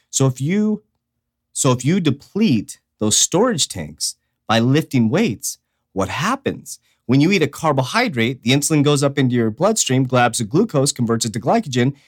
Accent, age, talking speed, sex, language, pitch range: American, 30-49, 170 wpm, male, English, 115-160 Hz